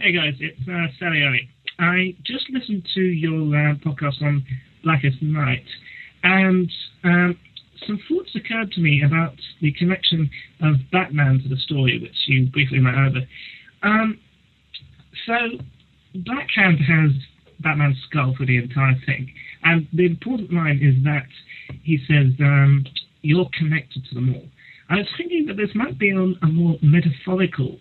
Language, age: English, 30-49